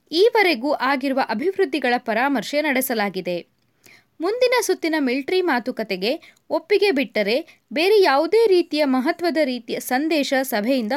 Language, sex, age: Kannada, female, 20-39